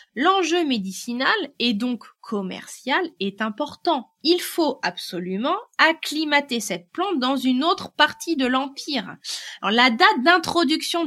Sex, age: female, 20-39